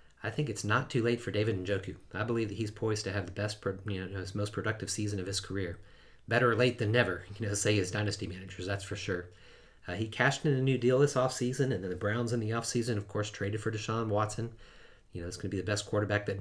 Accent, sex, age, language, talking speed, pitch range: American, male, 30-49, English, 265 wpm, 95-115 Hz